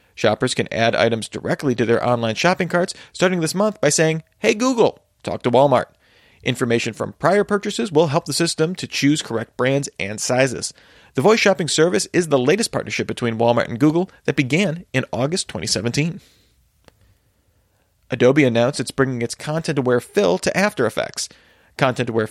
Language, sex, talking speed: English, male, 165 wpm